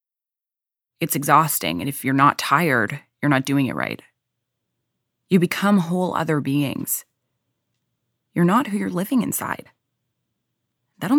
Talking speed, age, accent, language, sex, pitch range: 130 wpm, 20-39, American, English, female, 140-180 Hz